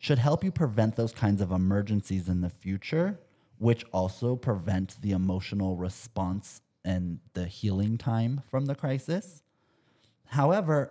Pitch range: 95-125 Hz